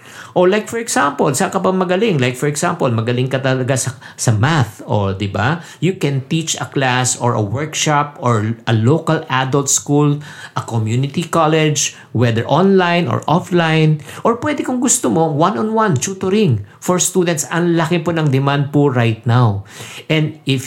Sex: male